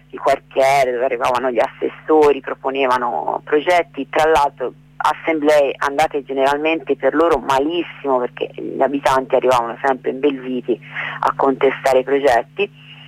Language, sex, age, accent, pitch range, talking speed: Italian, female, 40-59, native, 135-155 Hz, 120 wpm